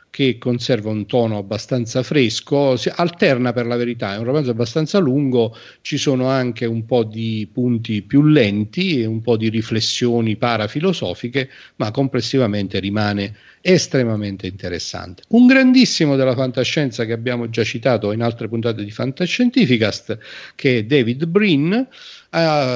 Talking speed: 140 wpm